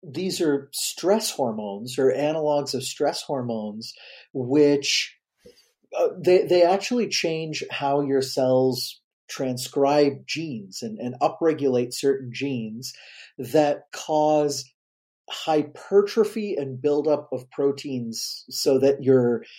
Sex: male